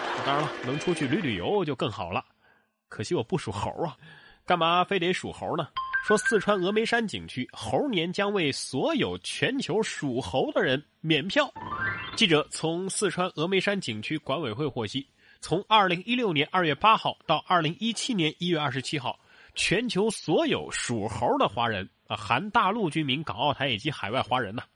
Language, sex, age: Chinese, male, 20-39